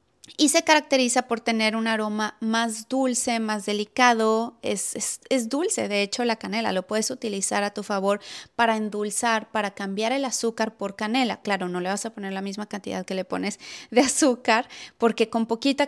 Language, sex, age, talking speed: Spanish, female, 30-49, 185 wpm